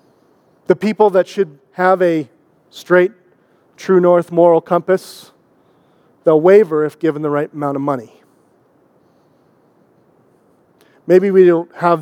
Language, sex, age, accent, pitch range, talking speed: English, male, 40-59, American, 155-185 Hz, 120 wpm